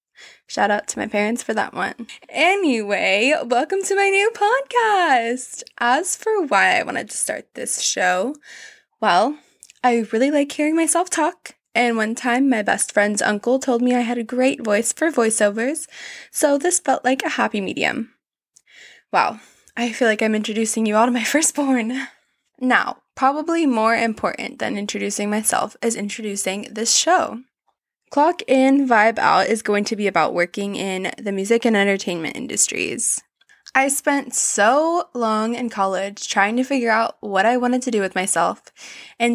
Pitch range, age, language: 210-275 Hz, 20-39, English